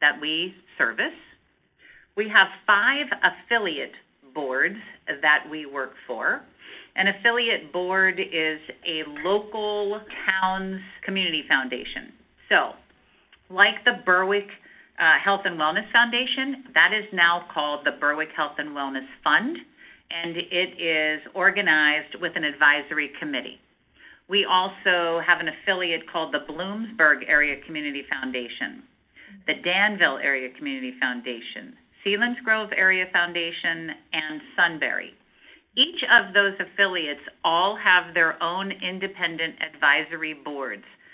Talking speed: 120 wpm